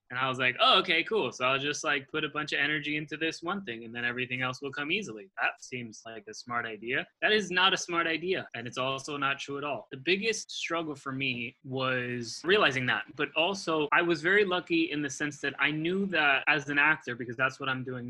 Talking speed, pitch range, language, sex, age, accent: 250 wpm, 130-160 Hz, English, male, 20-39, American